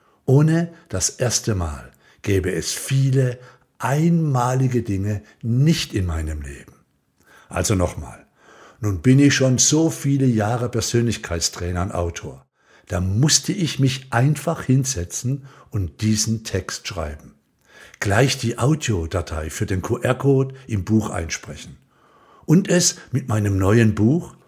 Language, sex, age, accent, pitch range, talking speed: German, male, 60-79, German, 95-135 Hz, 125 wpm